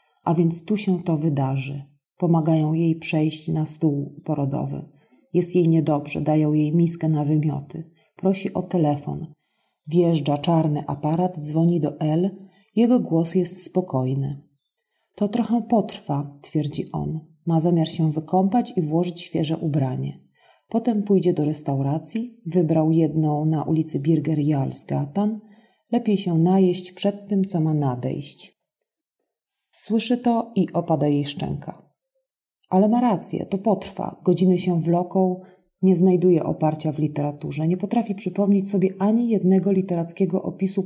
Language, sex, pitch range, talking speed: Polish, female, 155-195 Hz, 135 wpm